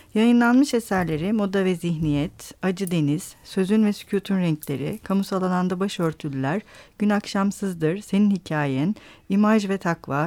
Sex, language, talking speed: female, Turkish, 125 wpm